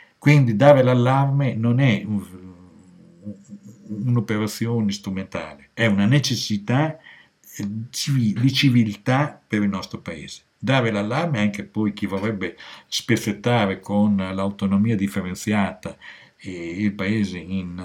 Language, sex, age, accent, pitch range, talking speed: Italian, male, 60-79, native, 95-120 Hz, 105 wpm